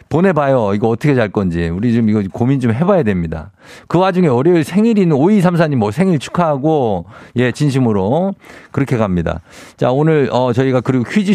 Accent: native